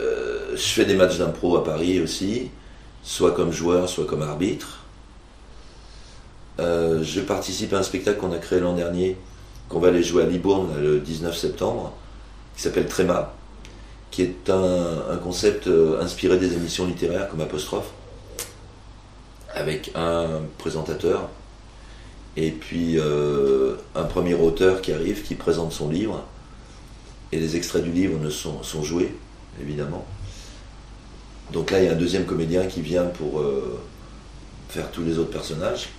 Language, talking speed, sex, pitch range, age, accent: French, 150 wpm, male, 80-95 Hz, 40-59, French